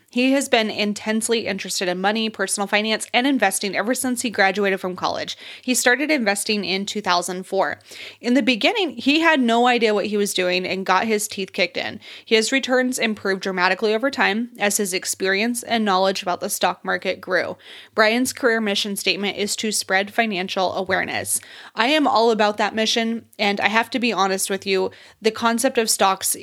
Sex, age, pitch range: female, 20-39, 195-230 Hz